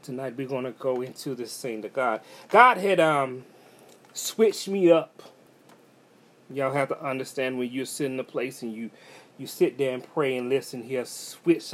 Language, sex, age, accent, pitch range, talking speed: English, male, 30-49, American, 135-170 Hz, 195 wpm